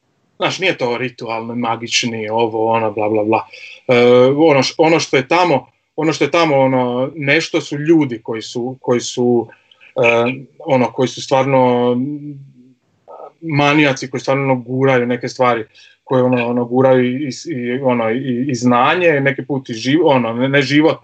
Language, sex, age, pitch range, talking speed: Croatian, male, 20-39, 125-155 Hz, 150 wpm